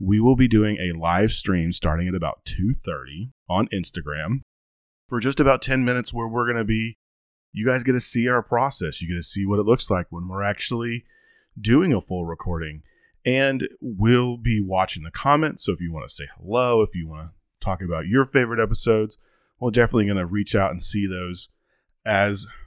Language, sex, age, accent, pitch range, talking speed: English, male, 30-49, American, 90-120 Hz, 205 wpm